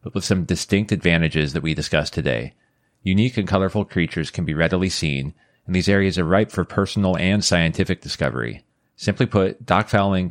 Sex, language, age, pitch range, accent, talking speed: male, English, 30-49, 80-100 Hz, American, 180 wpm